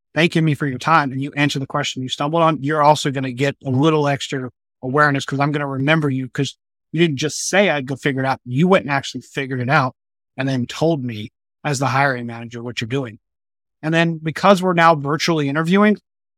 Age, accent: 30-49, American